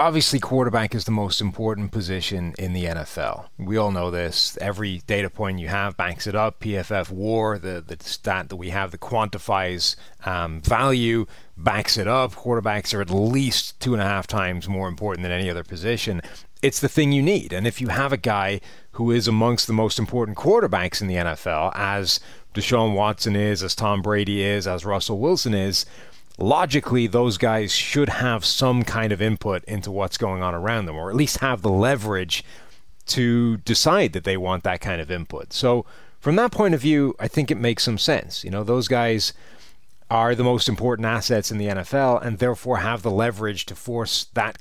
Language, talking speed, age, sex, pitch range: English, 200 wpm, 30-49, male, 95-120 Hz